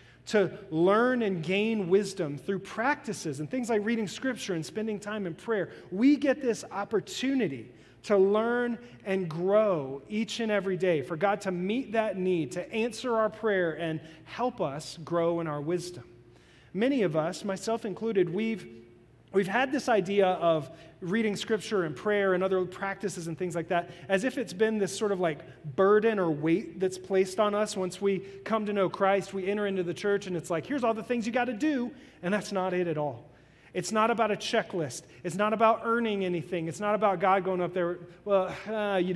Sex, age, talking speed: male, 30-49, 200 wpm